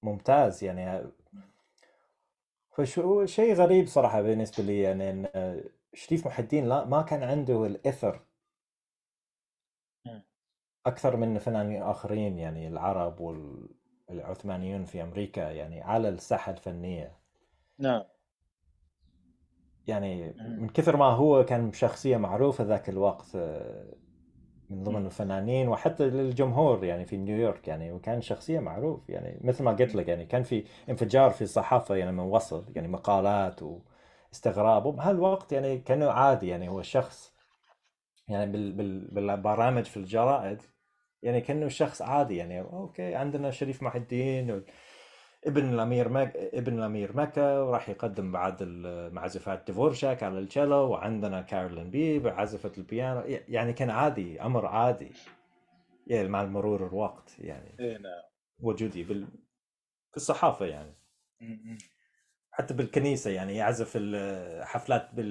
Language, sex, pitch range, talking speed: Arabic, male, 95-135 Hz, 120 wpm